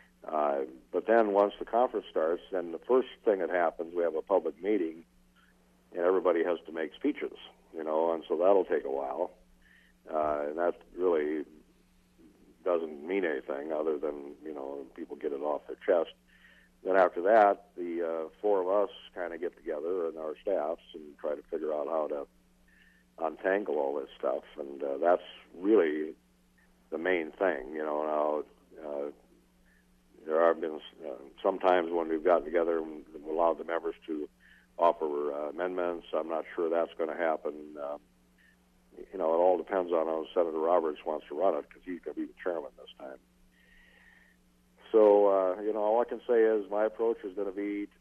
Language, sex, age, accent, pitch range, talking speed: English, male, 60-79, American, 65-100 Hz, 185 wpm